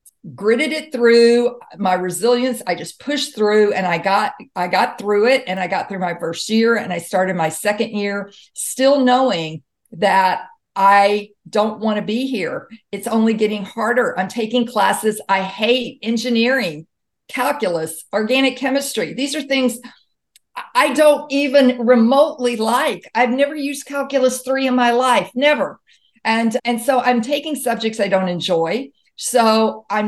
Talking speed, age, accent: 160 wpm, 50-69, American